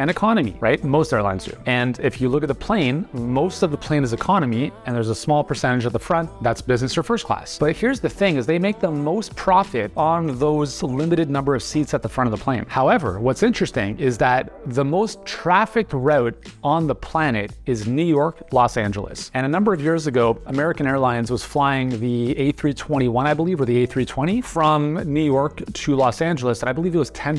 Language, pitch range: English, 125-160 Hz